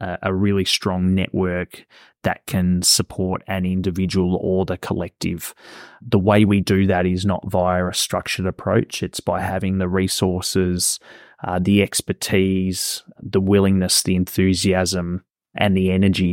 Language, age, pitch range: English, 20-39, 90-95 Hz